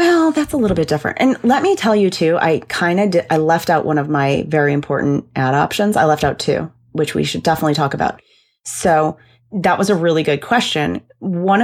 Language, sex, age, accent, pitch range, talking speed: English, female, 30-49, American, 145-190 Hz, 225 wpm